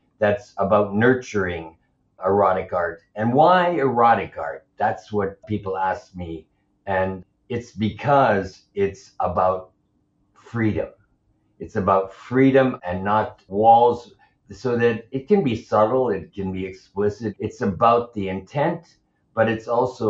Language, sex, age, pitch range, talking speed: English, male, 50-69, 95-115 Hz, 130 wpm